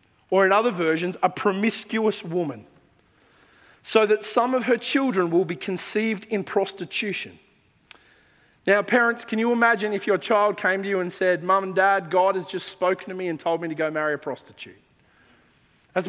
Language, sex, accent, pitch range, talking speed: English, male, Australian, 155-200 Hz, 185 wpm